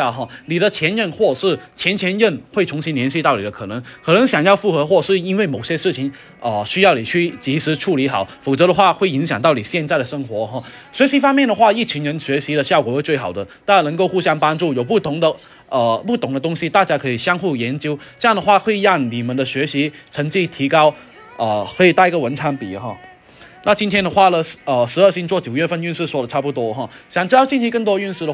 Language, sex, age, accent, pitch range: Chinese, male, 20-39, native, 135-180 Hz